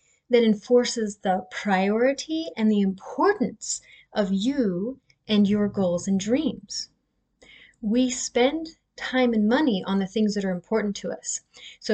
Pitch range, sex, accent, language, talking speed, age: 195-250 Hz, female, American, English, 140 wpm, 30-49